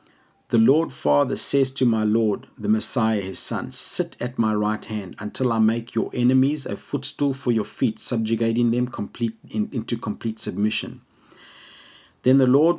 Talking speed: 160 wpm